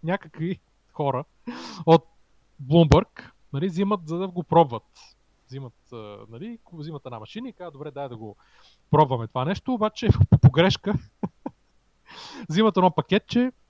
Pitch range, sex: 130-180 Hz, male